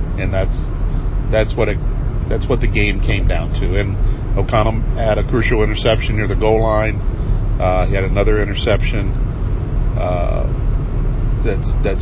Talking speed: 150 wpm